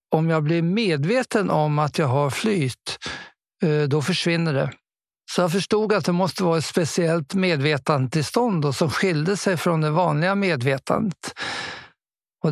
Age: 50-69